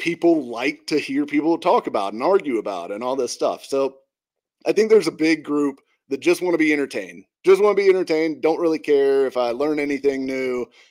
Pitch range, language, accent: 120-190 Hz, English, American